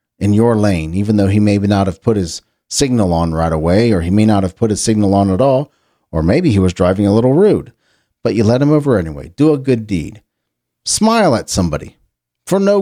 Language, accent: English, American